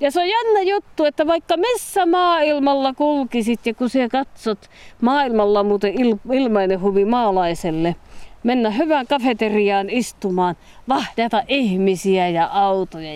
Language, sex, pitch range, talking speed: Finnish, female, 190-300 Hz, 130 wpm